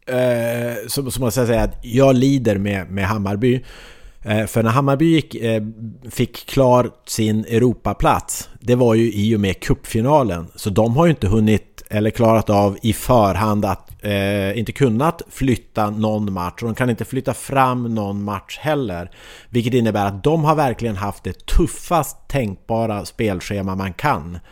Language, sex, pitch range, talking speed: English, male, 105-135 Hz, 155 wpm